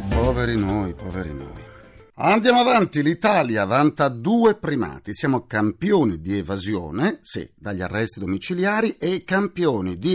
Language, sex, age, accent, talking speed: Italian, male, 50-69, native, 125 wpm